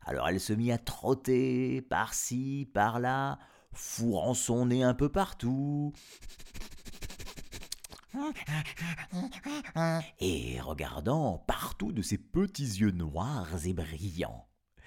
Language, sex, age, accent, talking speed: French, male, 50-69, French, 95 wpm